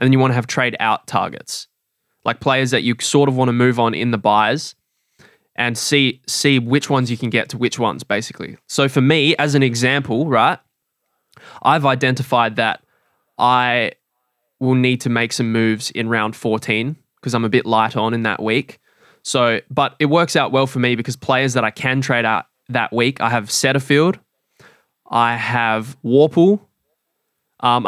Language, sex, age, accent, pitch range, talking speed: English, male, 20-39, Australian, 115-135 Hz, 185 wpm